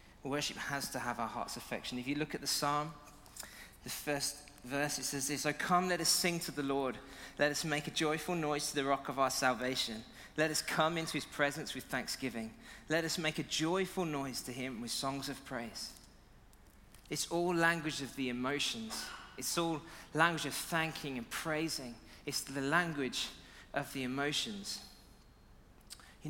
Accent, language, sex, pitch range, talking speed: British, English, male, 125-155 Hz, 180 wpm